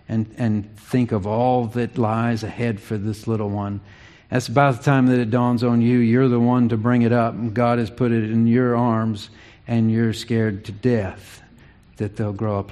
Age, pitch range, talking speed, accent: 50-69, 105-125 Hz, 210 wpm, American